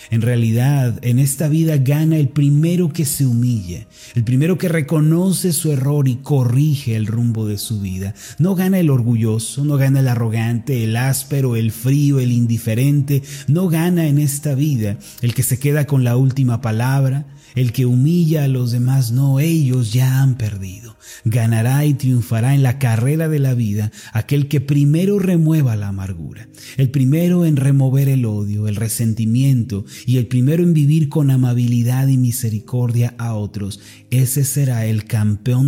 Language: Spanish